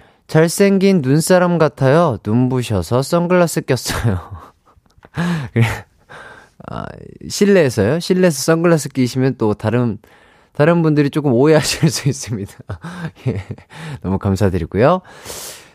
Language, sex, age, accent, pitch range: Korean, male, 30-49, native, 105-175 Hz